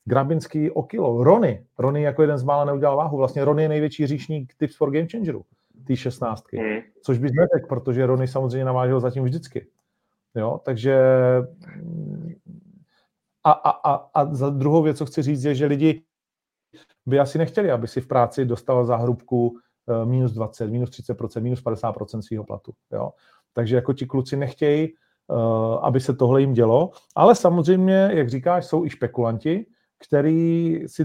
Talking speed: 160 wpm